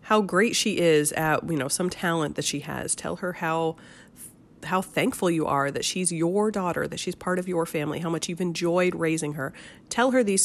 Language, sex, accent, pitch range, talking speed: English, female, American, 155-205 Hz, 220 wpm